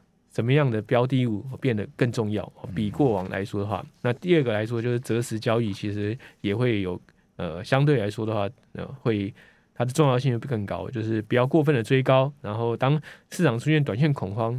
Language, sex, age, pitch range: Chinese, male, 20-39, 110-145 Hz